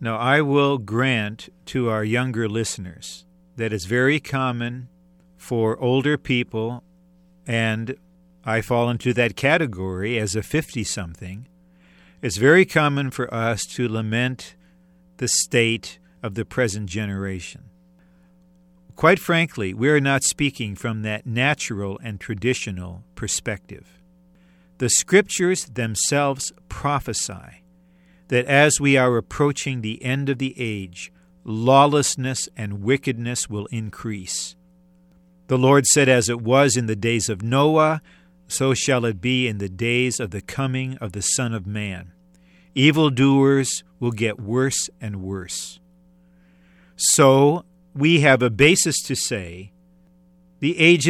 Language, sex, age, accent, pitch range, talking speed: English, male, 50-69, American, 115-180 Hz, 130 wpm